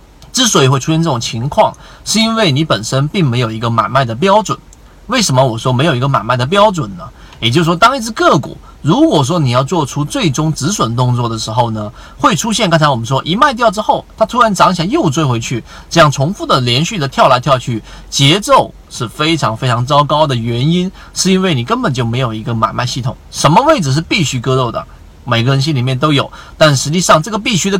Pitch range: 125-175 Hz